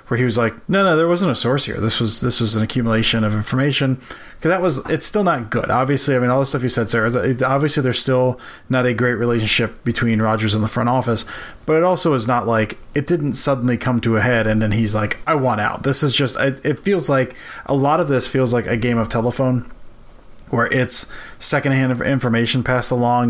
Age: 30-49